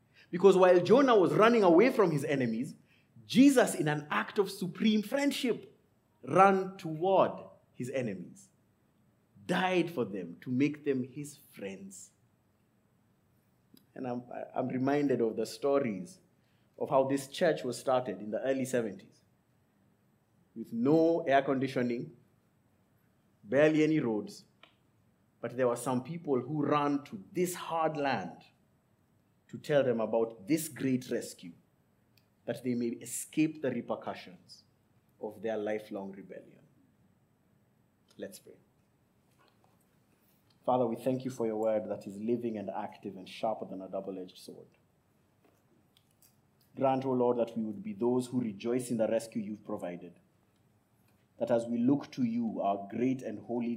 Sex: male